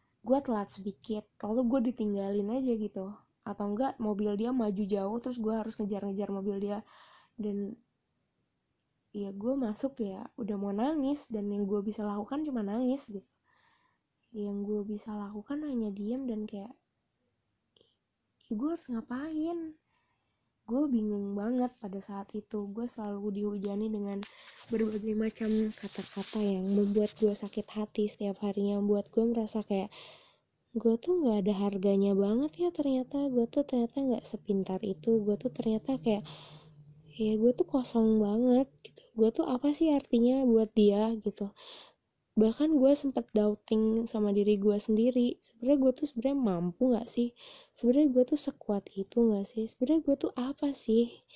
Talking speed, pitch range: 150 wpm, 205-250 Hz